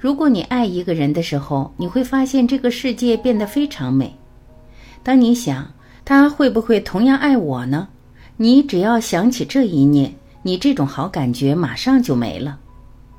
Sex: female